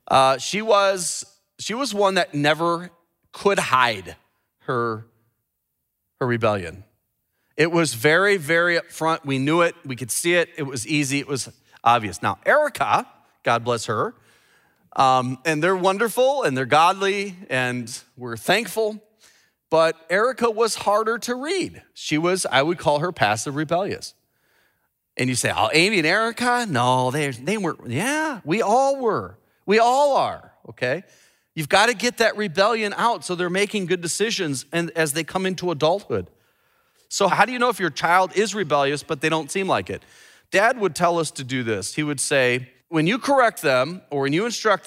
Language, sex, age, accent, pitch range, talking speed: English, male, 30-49, American, 135-200 Hz, 175 wpm